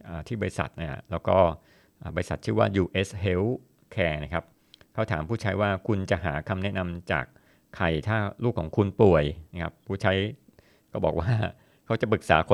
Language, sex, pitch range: Thai, male, 85-105 Hz